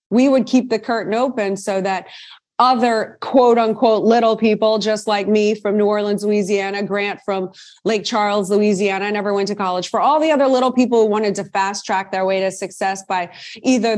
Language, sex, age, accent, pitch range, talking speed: English, female, 30-49, American, 195-230 Hz, 200 wpm